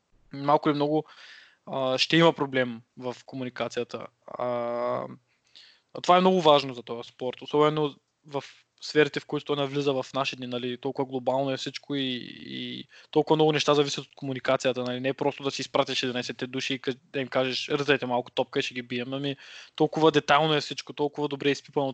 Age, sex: 20-39, male